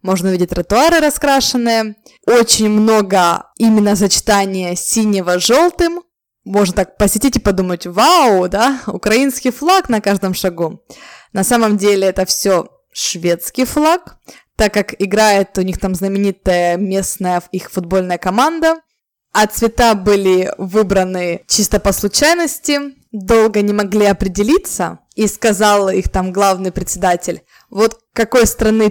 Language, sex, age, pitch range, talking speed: Russian, female, 20-39, 190-245 Hz, 125 wpm